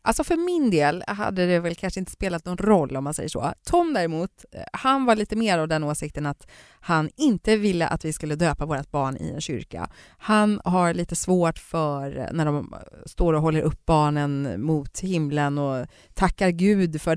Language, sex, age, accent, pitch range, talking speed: Swedish, female, 30-49, native, 160-235 Hz, 195 wpm